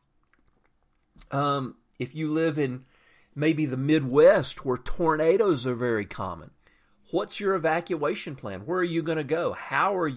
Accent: American